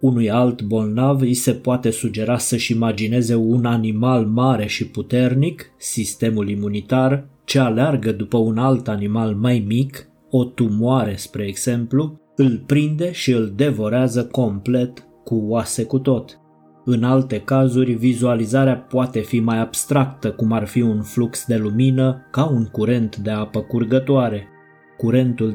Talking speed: 140 wpm